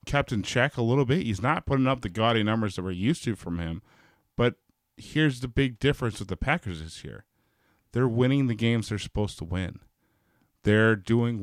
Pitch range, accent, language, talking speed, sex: 105-140 Hz, American, English, 205 wpm, male